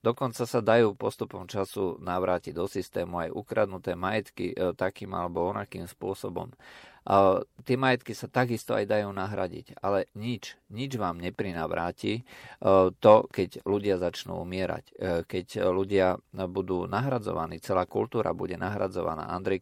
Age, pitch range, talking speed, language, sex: 40-59, 90-110 Hz, 125 wpm, Slovak, male